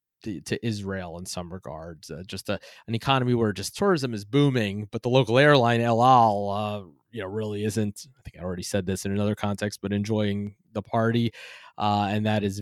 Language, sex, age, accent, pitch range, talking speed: English, male, 20-39, American, 95-110 Hz, 210 wpm